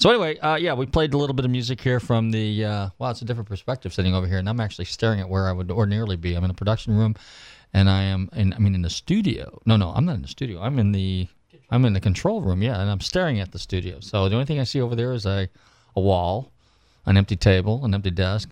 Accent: American